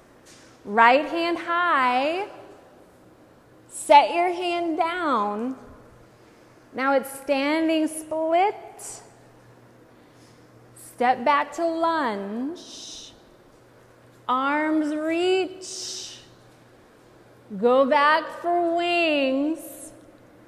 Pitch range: 210-310 Hz